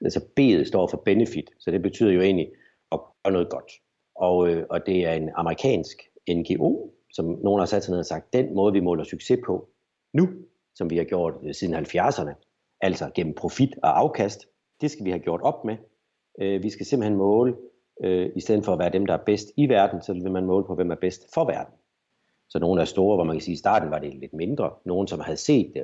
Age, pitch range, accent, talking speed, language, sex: 60-79, 85-105 Hz, native, 230 wpm, Danish, male